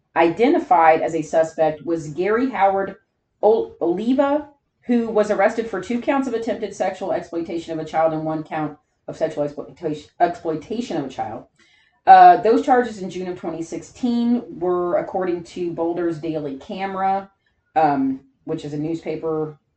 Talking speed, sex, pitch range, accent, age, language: 145 wpm, female, 160-215 Hz, American, 30-49, English